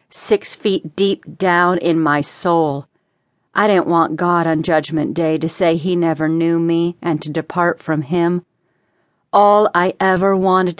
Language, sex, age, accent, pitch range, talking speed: English, female, 50-69, American, 160-185 Hz, 160 wpm